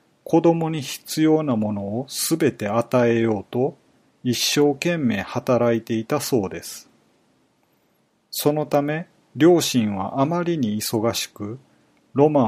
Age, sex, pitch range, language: 40-59, male, 115-150 Hz, Japanese